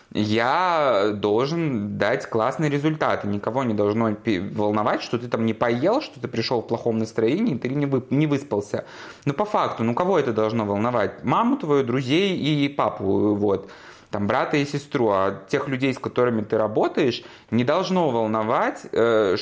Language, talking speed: Russian, 160 wpm